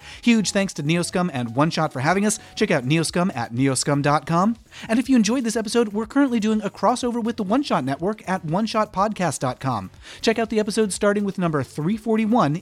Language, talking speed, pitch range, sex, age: English, 185 wpm, 145-215 Hz, male, 30-49